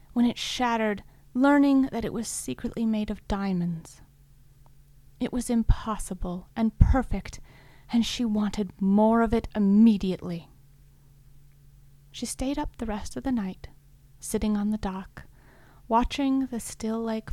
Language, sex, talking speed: English, female, 135 wpm